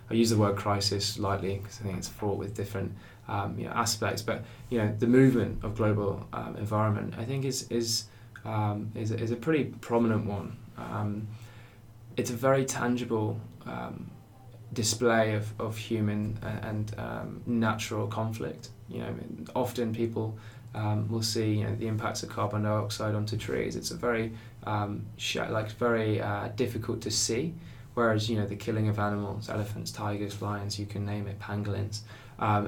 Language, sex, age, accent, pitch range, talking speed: English, male, 20-39, British, 105-115 Hz, 170 wpm